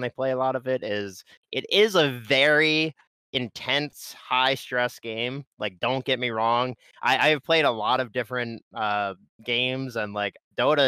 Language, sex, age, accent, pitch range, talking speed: English, male, 30-49, American, 125-205 Hz, 180 wpm